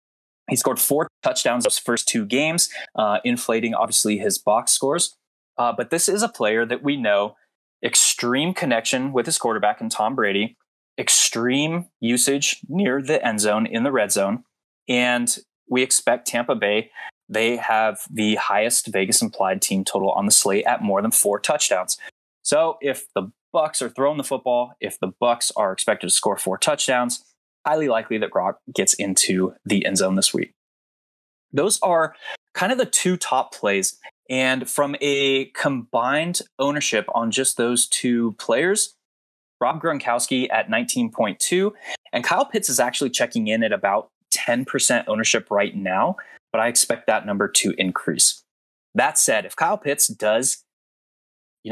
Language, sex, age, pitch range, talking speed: English, male, 20-39, 110-145 Hz, 160 wpm